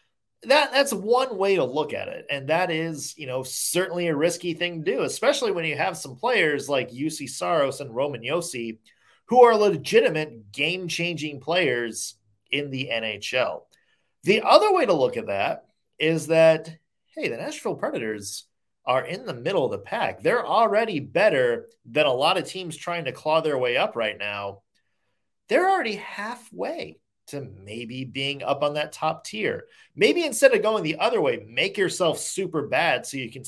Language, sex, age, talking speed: English, male, 30-49, 180 wpm